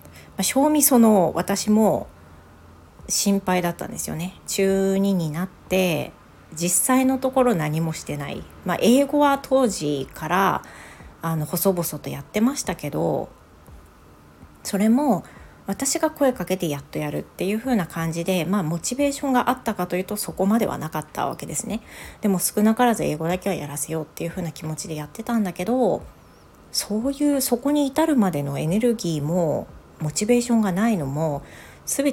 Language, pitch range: Japanese, 160-230 Hz